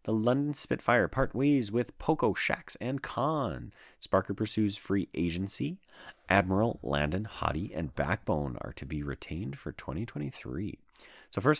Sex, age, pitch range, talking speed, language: male, 30-49, 85-120 Hz, 140 wpm, English